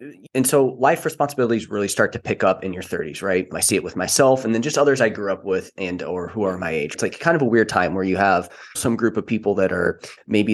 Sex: male